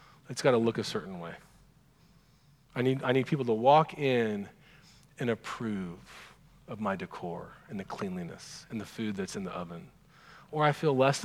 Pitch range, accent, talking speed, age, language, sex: 125-155 Hz, American, 180 wpm, 40-59, English, male